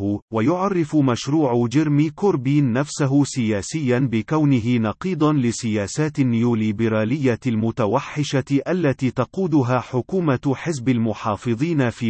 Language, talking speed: Arabic, 85 wpm